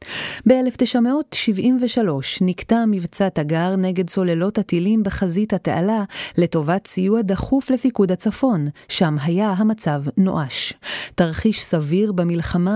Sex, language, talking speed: female, Hebrew, 100 wpm